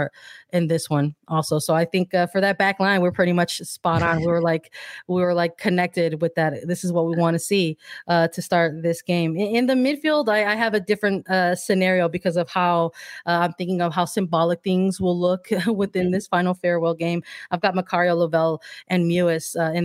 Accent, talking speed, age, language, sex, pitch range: American, 225 wpm, 20-39, English, female, 170-190 Hz